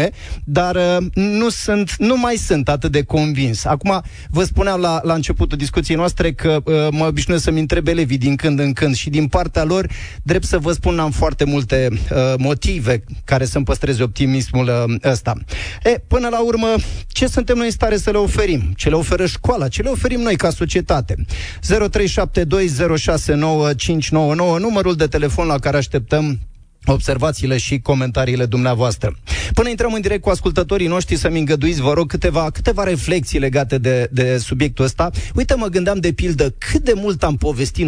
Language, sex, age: Romanian, male, 30-49